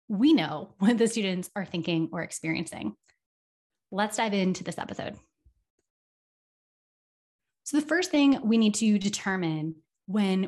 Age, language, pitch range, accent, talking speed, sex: 20-39, English, 180-235 Hz, American, 130 wpm, female